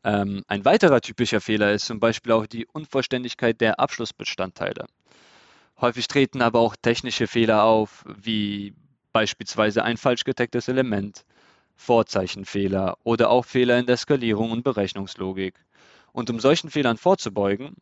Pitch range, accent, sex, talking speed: 105-130 Hz, German, male, 130 wpm